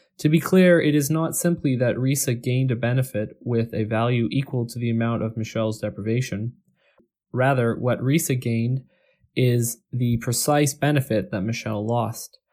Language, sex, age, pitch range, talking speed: English, male, 20-39, 115-130 Hz, 160 wpm